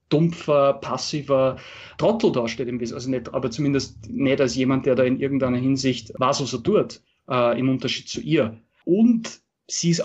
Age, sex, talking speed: 30-49, male, 175 wpm